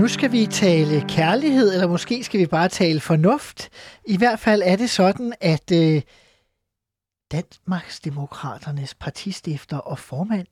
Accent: native